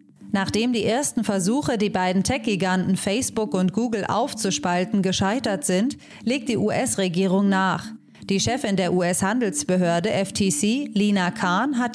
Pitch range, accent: 185-225 Hz, German